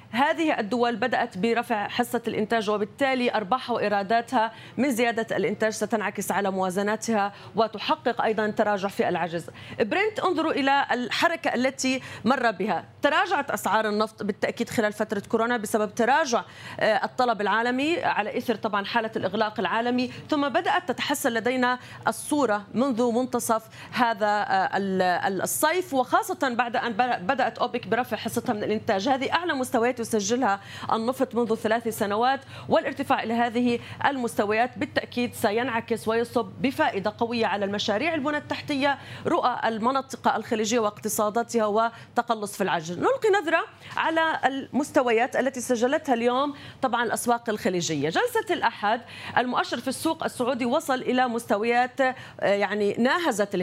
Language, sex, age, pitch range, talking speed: Arabic, female, 30-49, 215-265 Hz, 125 wpm